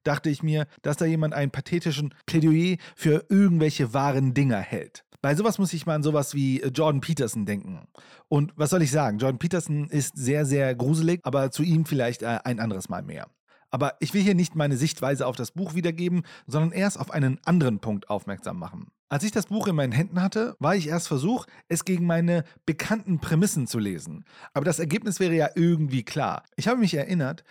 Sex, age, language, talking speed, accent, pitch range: male, 40-59, German, 205 wpm, German, 140-180 Hz